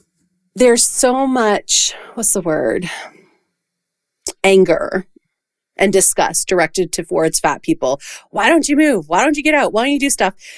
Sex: female